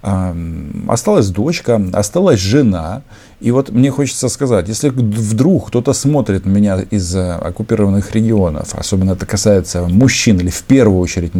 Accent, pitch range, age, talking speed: native, 95-130 Hz, 50-69, 135 wpm